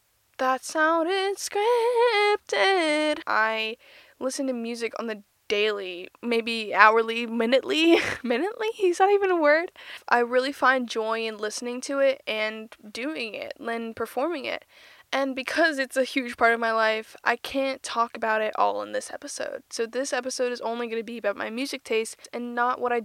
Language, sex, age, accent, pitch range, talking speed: English, female, 10-29, American, 225-280 Hz, 175 wpm